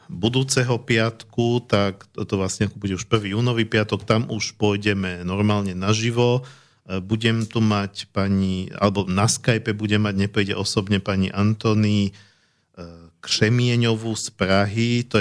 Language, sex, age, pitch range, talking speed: Slovak, male, 50-69, 95-115 Hz, 125 wpm